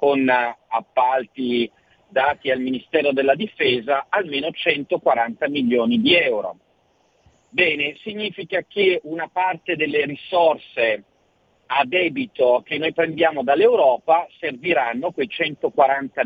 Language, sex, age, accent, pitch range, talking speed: Italian, male, 50-69, native, 155-235 Hz, 105 wpm